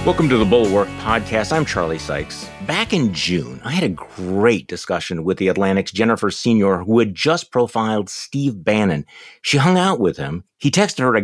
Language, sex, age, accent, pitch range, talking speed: English, male, 50-69, American, 90-115 Hz, 190 wpm